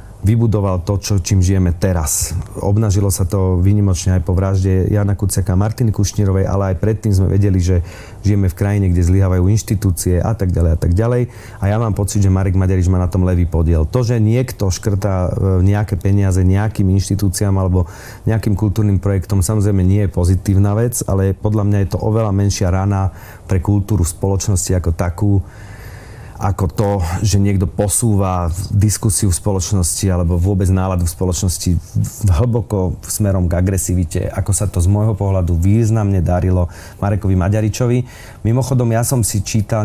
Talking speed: 165 wpm